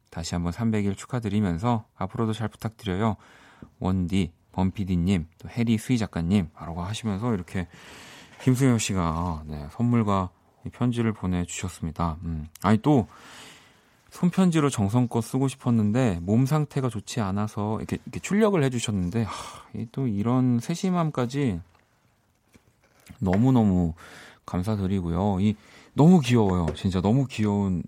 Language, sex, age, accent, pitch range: Korean, male, 40-59, native, 90-120 Hz